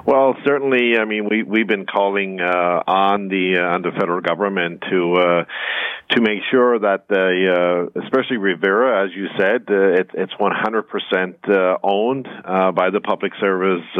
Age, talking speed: 50-69, 170 wpm